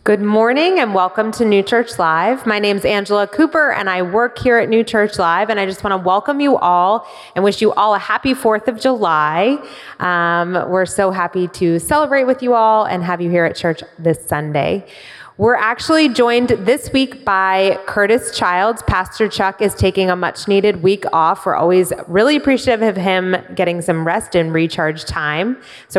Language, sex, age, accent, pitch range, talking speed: English, female, 20-39, American, 180-245 Hz, 195 wpm